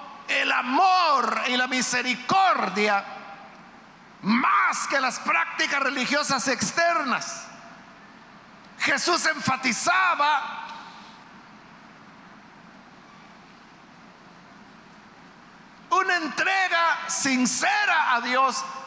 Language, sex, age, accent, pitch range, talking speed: Spanish, male, 50-69, Mexican, 230-305 Hz, 55 wpm